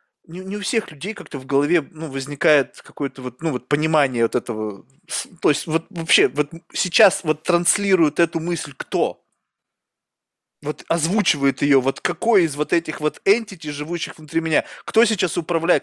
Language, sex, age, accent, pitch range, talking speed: Russian, male, 20-39, native, 155-200 Hz, 165 wpm